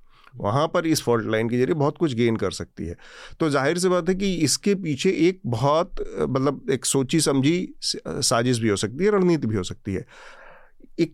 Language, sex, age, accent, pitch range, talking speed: Hindi, male, 40-59, native, 120-155 Hz, 205 wpm